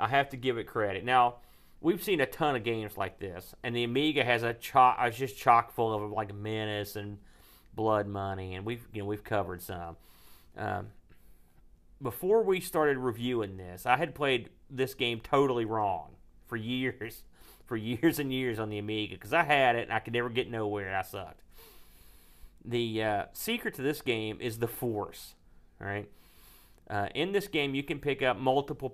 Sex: male